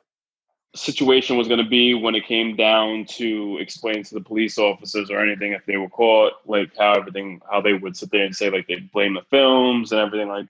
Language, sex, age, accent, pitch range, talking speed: English, male, 20-39, American, 105-120 Hz, 225 wpm